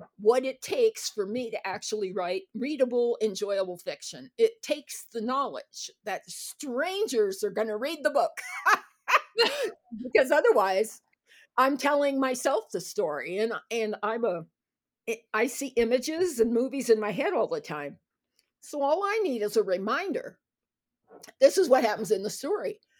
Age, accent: 50-69, American